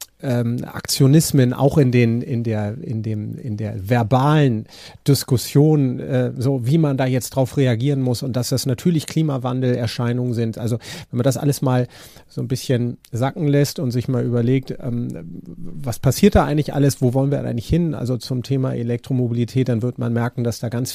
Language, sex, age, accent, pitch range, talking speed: German, male, 40-59, German, 120-140 Hz, 190 wpm